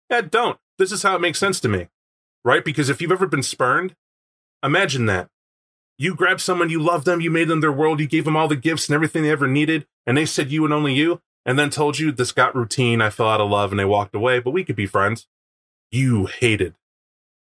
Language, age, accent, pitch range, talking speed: English, 20-39, American, 110-155 Hz, 245 wpm